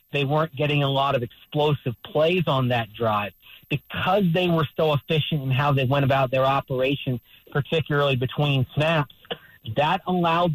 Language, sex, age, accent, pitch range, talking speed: English, male, 40-59, American, 130-160 Hz, 160 wpm